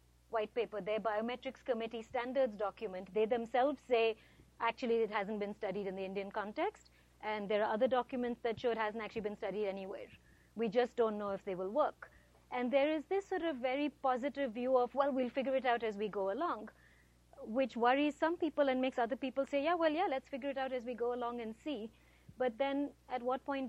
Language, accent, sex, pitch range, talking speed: English, Indian, female, 215-260 Hz, 220 wpm